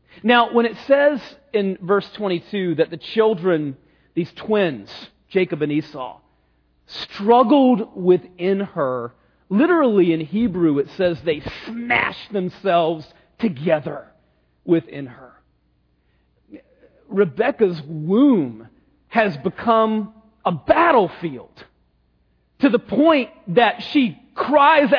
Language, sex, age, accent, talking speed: English, male, 40-59, American, 100 wpm